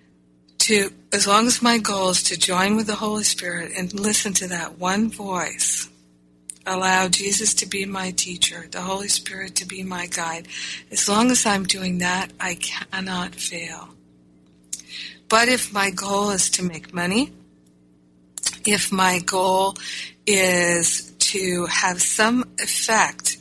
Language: English